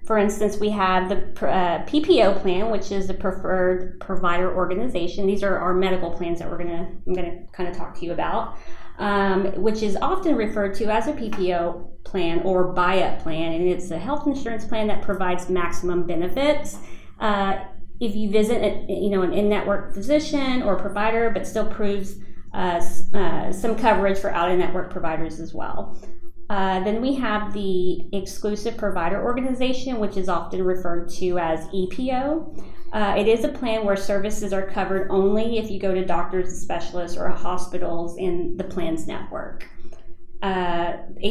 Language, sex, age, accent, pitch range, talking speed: English, female, 30-49, American, 175-210 Hz, 160 wpm